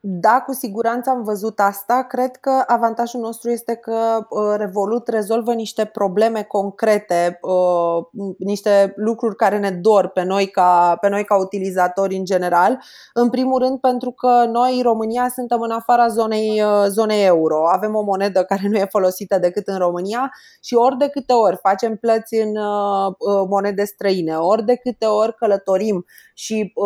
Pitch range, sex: 200-230 Hz, female